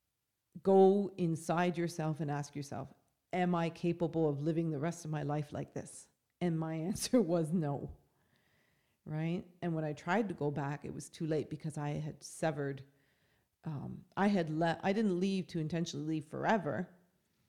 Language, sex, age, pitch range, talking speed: English, female, 40-59, 150-180 Hz, 165 wpm